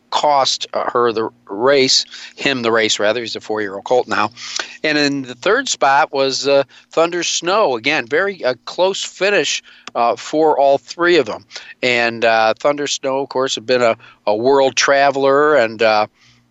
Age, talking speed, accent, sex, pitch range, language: 50-69, 185 wpm, American, male, 115-140 Hz, English